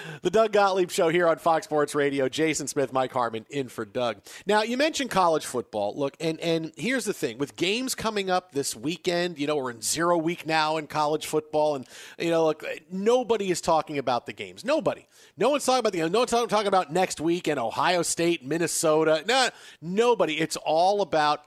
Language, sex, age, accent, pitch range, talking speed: English, male, 40-59, American, 145-175 Hz, 205 wpm